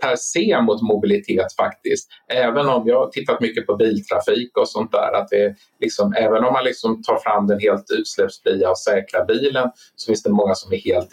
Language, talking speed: Swedish, 210 wpm